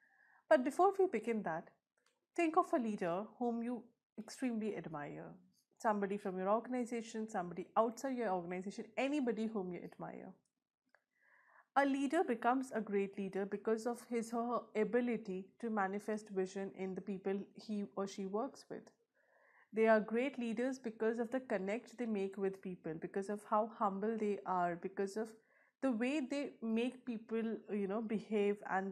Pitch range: 195-240 Hz